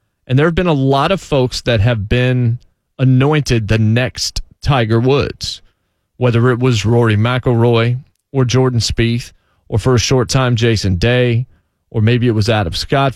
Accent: American